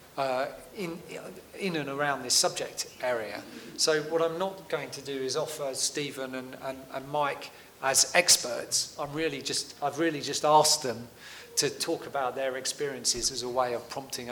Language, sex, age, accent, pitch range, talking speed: English, male, 40-59, British, 125-155 Hz, 175 wpm